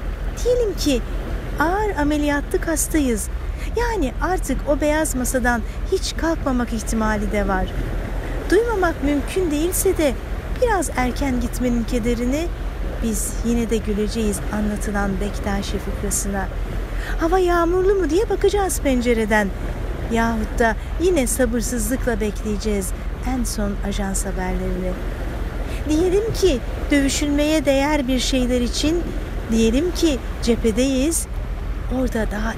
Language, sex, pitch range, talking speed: Turkish, female, 215-295 Hz, 105 wpm